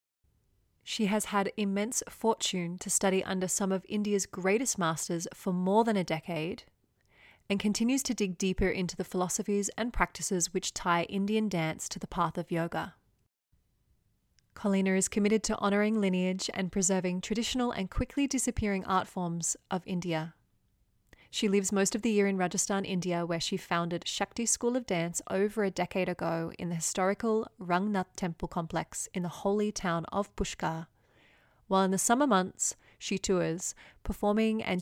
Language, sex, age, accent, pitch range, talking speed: English, female, 20-39, Australian, 175-205 Hz, 160 wpm